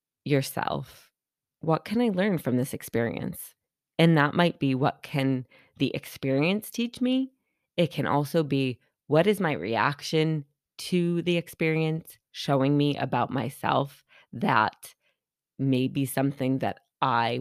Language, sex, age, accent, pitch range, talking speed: English, female, 20-39, American, 130-155 Hz, 135 wpm